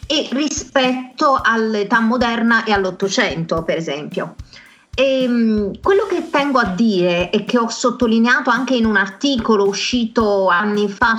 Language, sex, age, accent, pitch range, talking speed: Italian, female, 30-49, native, 210-260 Hz, 135 wpm